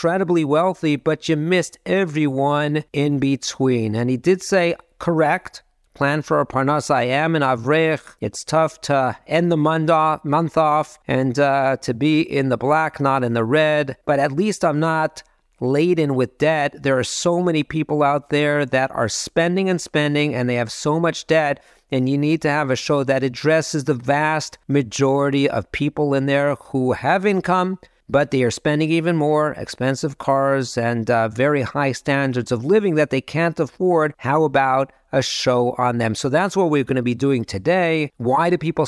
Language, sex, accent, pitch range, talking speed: English, male, American, 135-160 Hz, 185 wpm